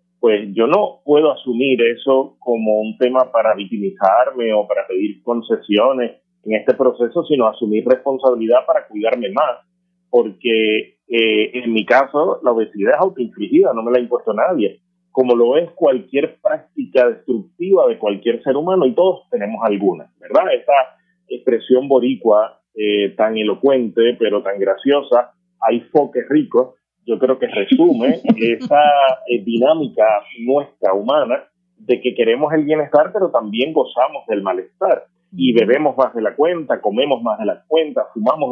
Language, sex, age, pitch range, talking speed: Spanish, male, 30-49, 115-170 Hz, 150 wpm